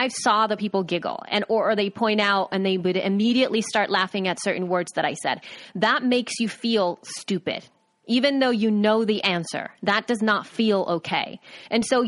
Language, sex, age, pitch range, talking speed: English, female, 30-49, 195-250 Hz, 200 wpm